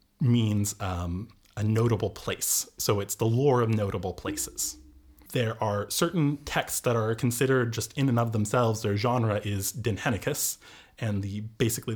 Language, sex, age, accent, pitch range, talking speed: English, male, 30-49, American, 100-125 Hz, 155 wpm